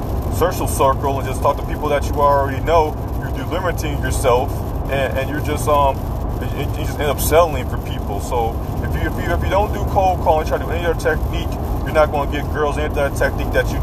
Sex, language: male, English